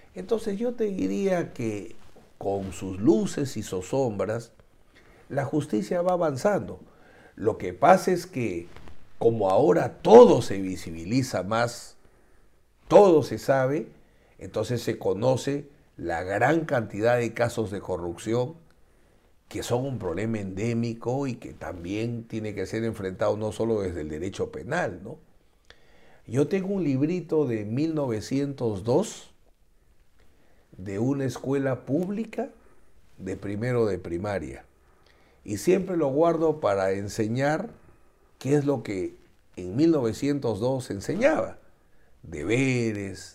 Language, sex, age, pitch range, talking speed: Spanish, male, 60-79, 105-155 Hz, 120 wpm